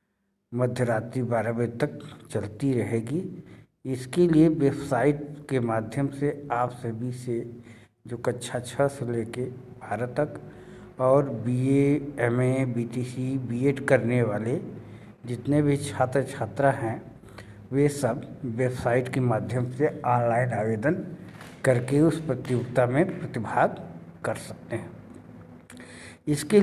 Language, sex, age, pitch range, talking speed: Hindi, male, 60-79, 120-140 Hz, 115 wpm